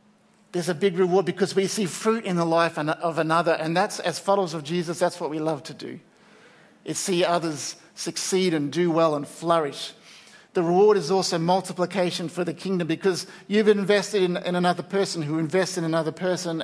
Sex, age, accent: male, 50-69, Australian